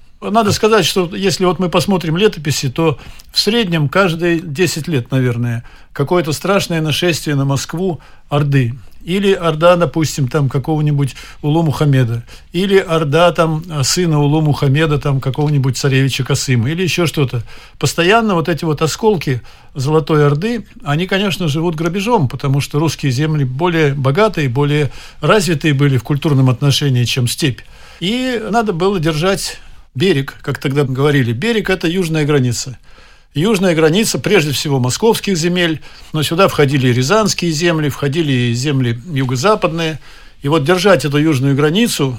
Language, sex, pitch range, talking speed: Russian, male, 140-180 Hz, 145 wpm